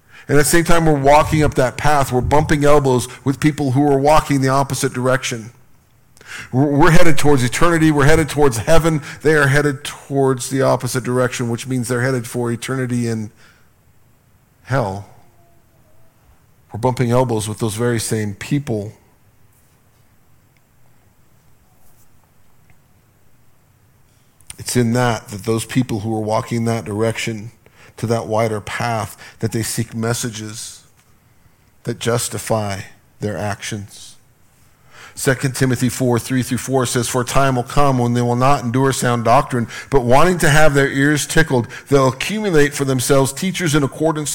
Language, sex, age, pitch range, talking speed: English, male, 50-69, 115-140 Hz, 145 wpm